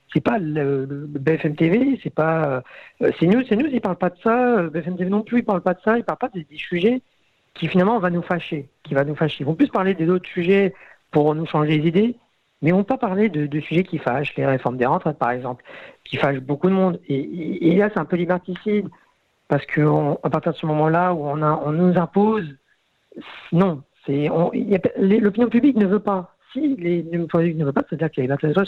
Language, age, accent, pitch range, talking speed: French, 50-69, French, 145-195 Hz, 255 wpm